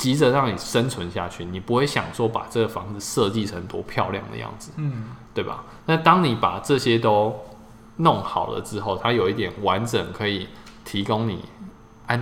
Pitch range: 100-120 Hz